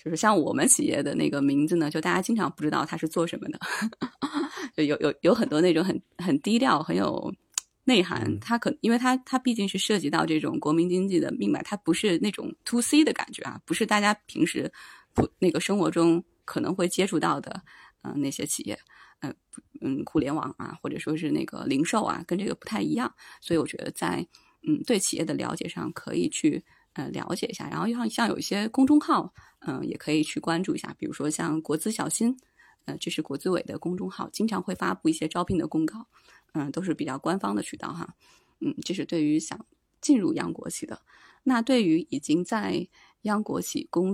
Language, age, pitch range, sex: Chinese, 20-39, 160-255 Hz, female